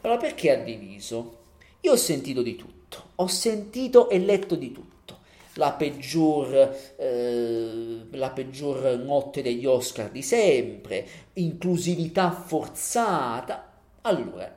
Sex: male